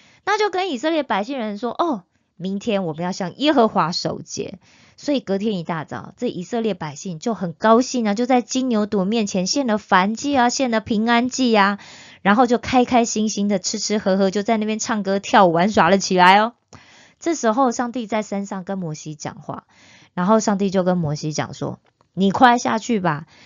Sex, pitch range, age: female, 185-245 Hz, 20-39